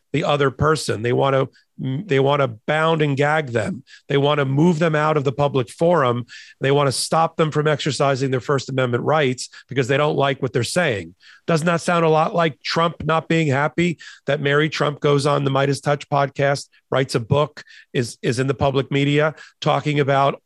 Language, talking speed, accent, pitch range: English, 210 wpm, American, 135-155 Hz